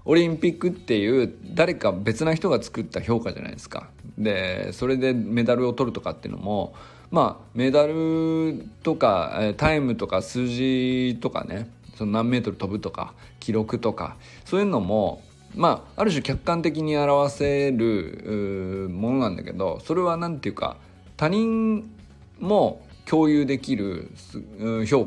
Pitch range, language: 105-160 Hz, Japanese